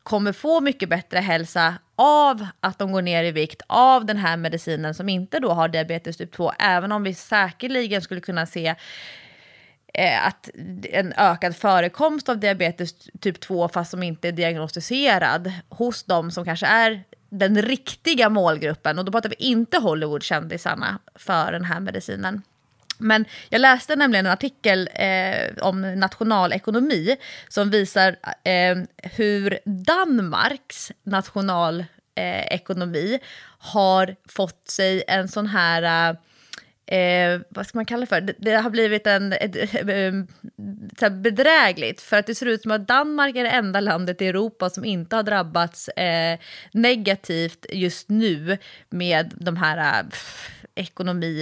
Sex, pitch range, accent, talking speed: female, 175-220 Hz, native, 150 wpm